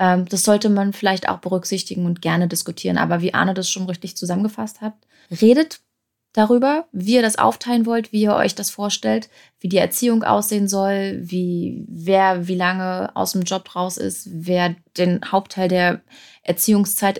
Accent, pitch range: German, 180-225 Hz